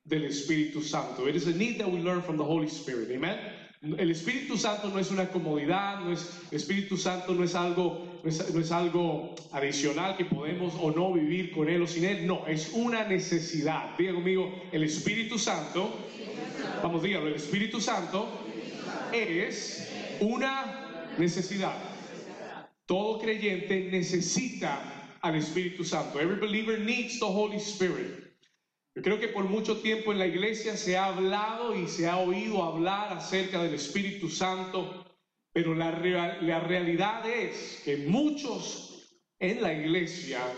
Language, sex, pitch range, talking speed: Spanish, male, 160-195 Hz, 155 wpm